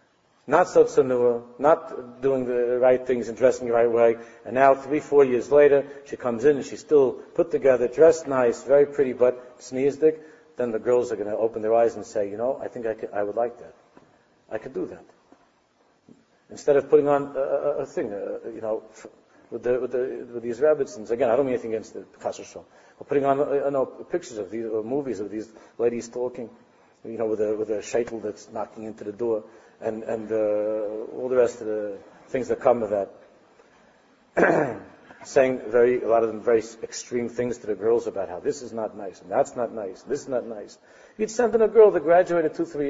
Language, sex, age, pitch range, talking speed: English, male, 50-69, 115-145 Hz, 230 wpm